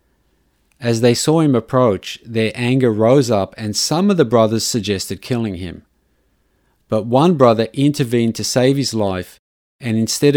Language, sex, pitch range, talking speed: English, male, 95-125 Hz, 155 wpm